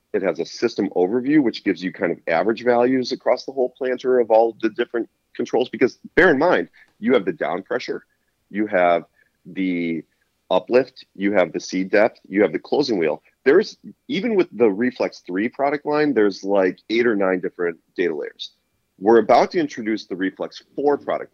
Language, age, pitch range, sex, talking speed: English, 40-59, 90-120 Hz, male, 190 wpm